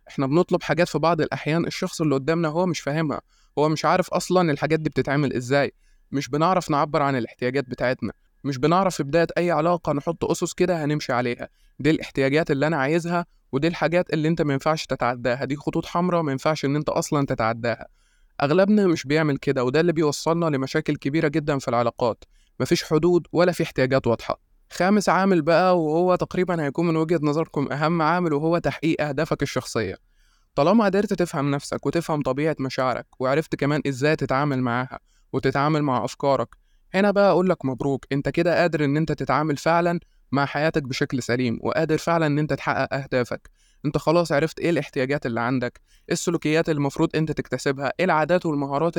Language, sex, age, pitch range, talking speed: Arabic, male, 20-39, 135-165 Hz, 170 wpm